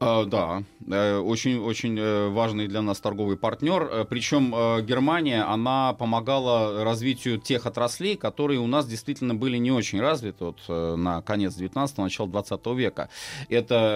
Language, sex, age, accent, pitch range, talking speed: Russian, male, 30-49, native, 100-130 Hz, 125 wpm